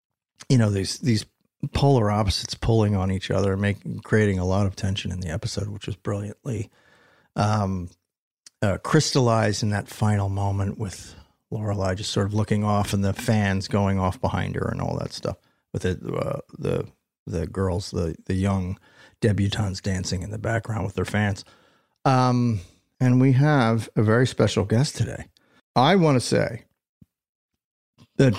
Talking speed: 165 wpm